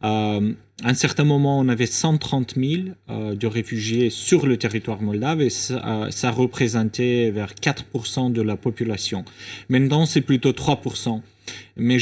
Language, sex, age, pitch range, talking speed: French, male, 30-49, 110-135 Hz, 155 wpm